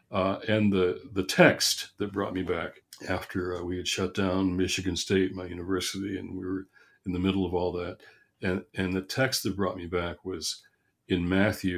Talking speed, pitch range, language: 200 wpm, 90-100 Hz, English